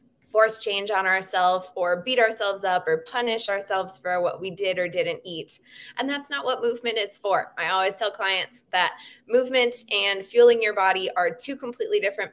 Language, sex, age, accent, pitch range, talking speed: English, female, 20-39, American, 180-235 Hz, 190 wpm